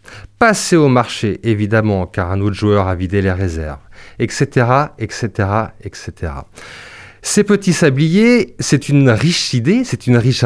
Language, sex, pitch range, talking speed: French, male, 105-145 Hz, 150 wpm